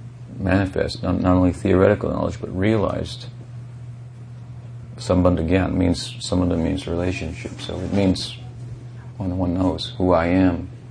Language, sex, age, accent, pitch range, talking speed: English, male, 50-69, American, 90-120 Hz, 140 wpm